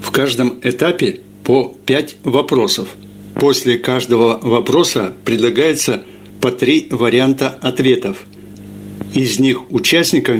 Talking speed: 100 wpm